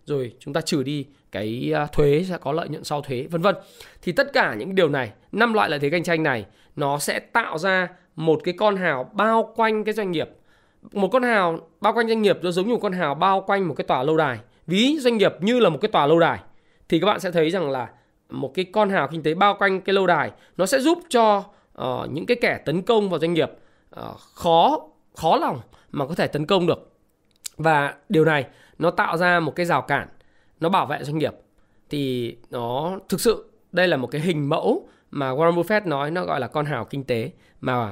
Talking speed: 235 wpm